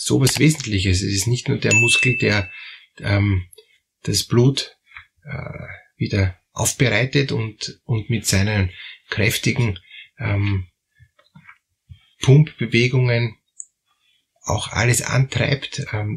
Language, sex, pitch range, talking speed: German, male, 105-140 Hz, 100 wpm